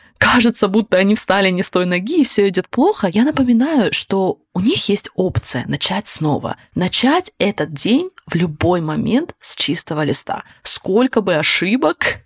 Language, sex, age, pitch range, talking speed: Russian, female, 20-39, 150-215 Hz, 160 wpm